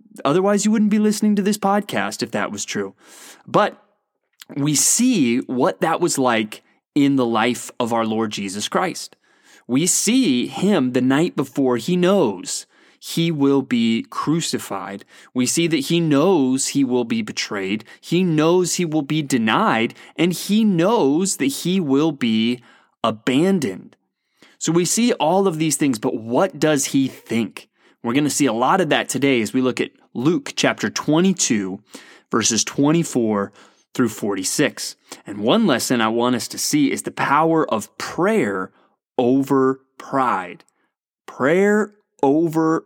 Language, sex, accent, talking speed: English, male, American, 155 wpm